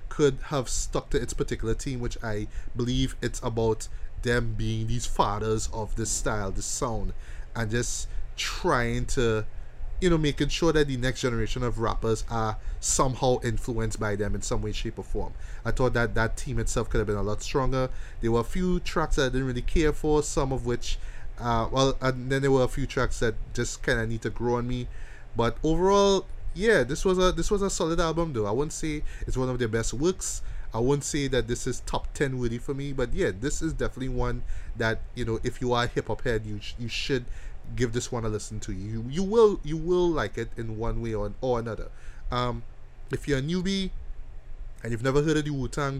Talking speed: 225 wpm